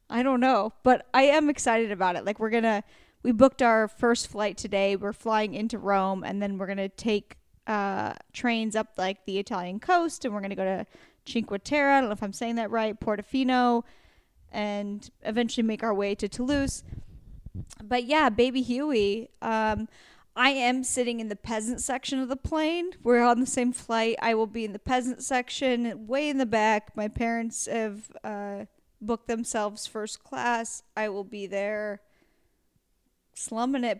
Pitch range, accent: 210-255 Hz, American